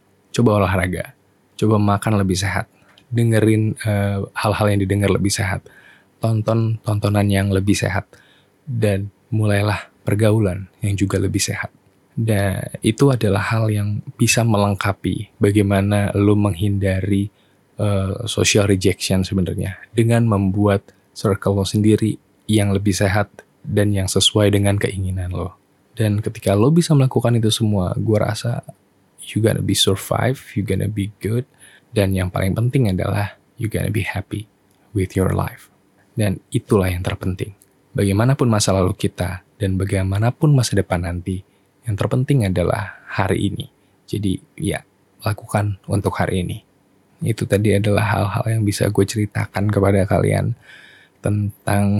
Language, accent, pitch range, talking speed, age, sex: Indonesian, native, 95-110 Hz, 135 wpm, 20-39, male